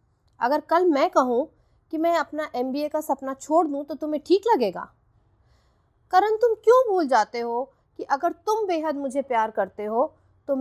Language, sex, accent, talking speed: Hindi, female, native, 175 wpm